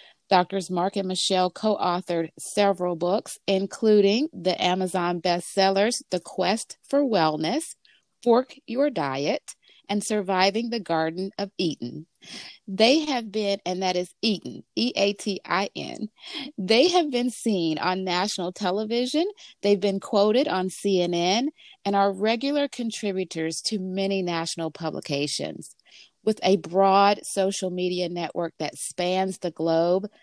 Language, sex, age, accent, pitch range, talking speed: English, female, 30-49, American, 180-220 Hz, 125 wpm